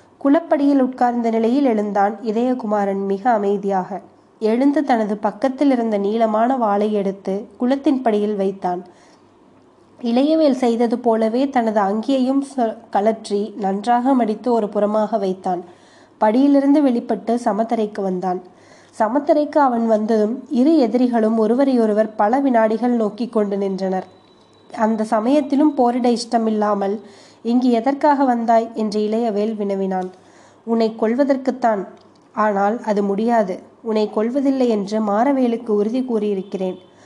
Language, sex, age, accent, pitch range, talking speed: Tamil, female, 20-39, native, 210-250 Hz, 105 wpm